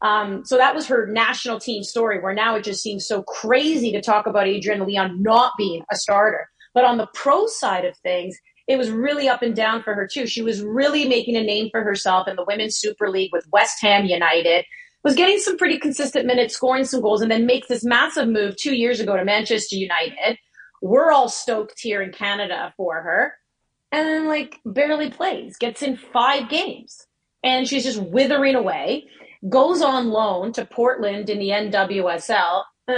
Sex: female